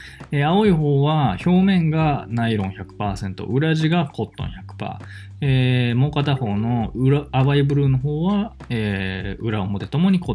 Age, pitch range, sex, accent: 20-39, 95-135 Hz, male, native